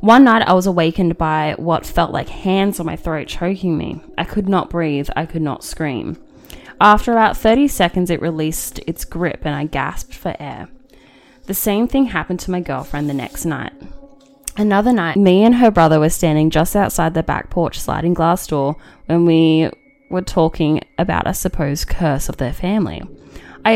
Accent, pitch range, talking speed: Australian, 150-195 Hz, 185 wpm